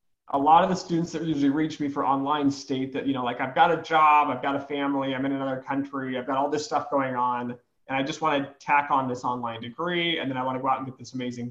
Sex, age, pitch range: male, 30-49, 130-150 Hz